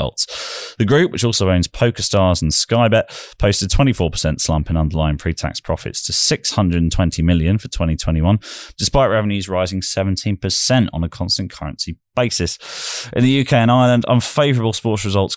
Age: 20-39